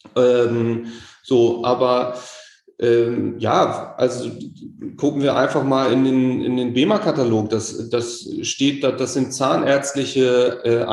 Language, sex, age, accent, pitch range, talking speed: German, male, 30-49, German, 120-145 Hz, 120 wpm